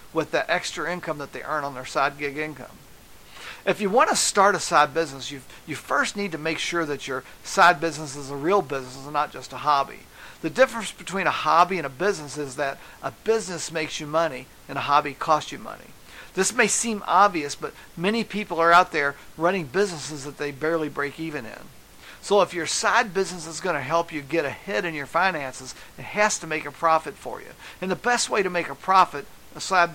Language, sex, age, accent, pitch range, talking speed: English, male, 50-69, American, 145-195 Hz, 220 wpm